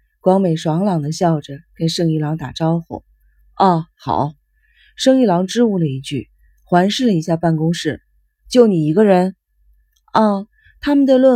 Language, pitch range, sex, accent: Chinese, 160-225 Hz, female, native